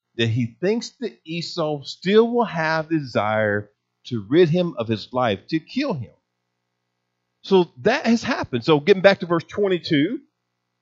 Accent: American